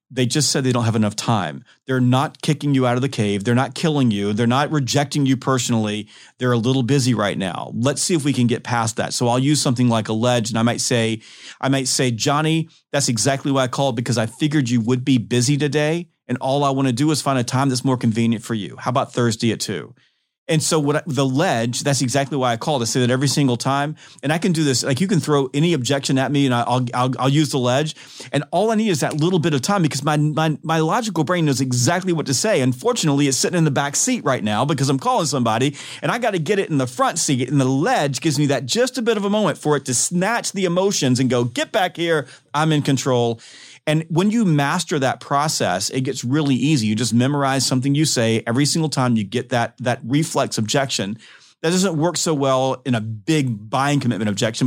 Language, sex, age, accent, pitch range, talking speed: English, male, 40-59, American, 120-150 Hz, 250 wpm